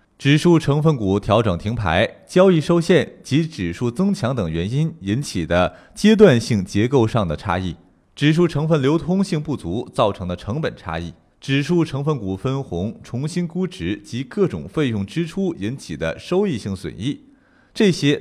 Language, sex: Chinese, male